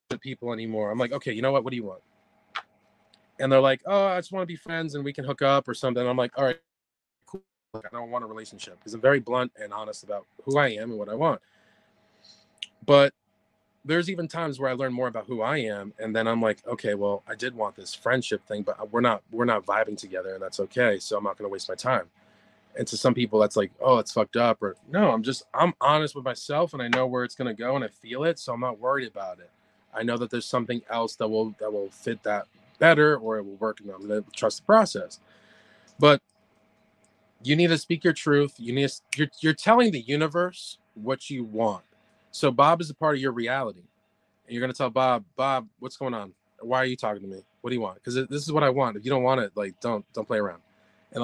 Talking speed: 255 wpm